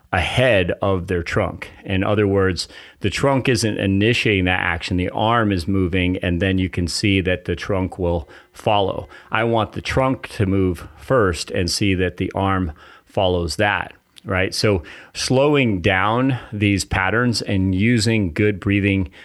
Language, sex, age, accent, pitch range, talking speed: English, male, 40-59, American, 90-105 Hz, 160 wpm